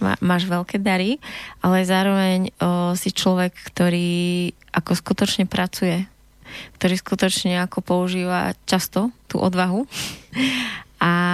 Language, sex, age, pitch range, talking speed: Slovak, female, 20-39, 180-200 Hz, 105 wpm